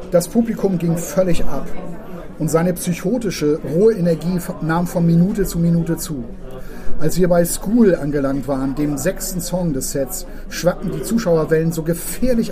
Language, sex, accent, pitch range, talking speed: German, male, German, 160-185 Hz, 155 wpm